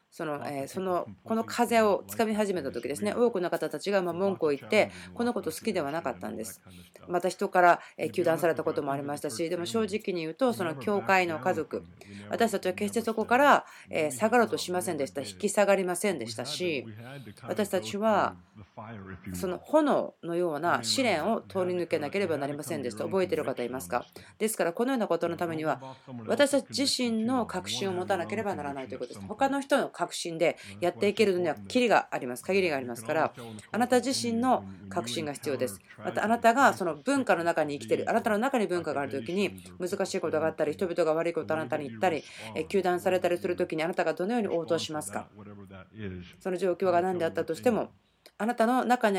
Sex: female